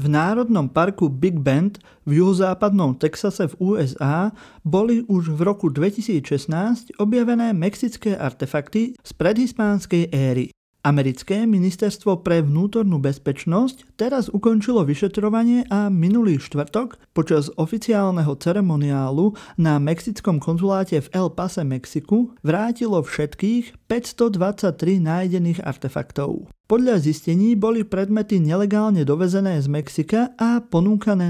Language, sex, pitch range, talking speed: Slovak, male, 150-215 Hz, 110 wpm